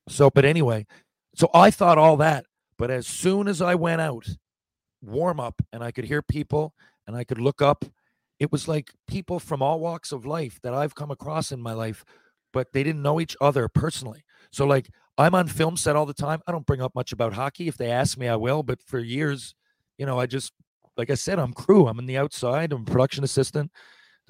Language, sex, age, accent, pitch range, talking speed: English, male, 40-59, American, 115-145 Hz, 230 wpm